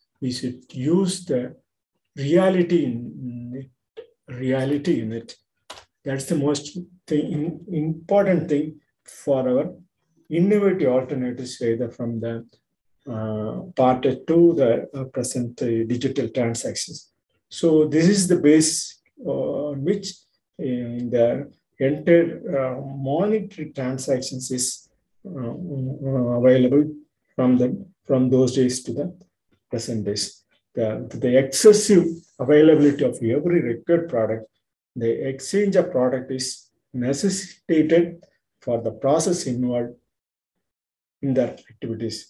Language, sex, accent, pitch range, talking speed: Tamil, male, native, 125-165 Hz, 115 wpm